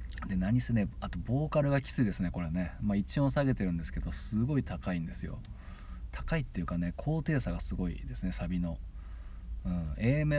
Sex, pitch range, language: male, 85-115 Hz, Japanese